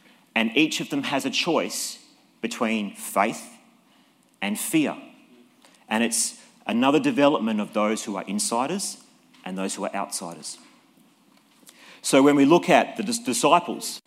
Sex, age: male, 40-59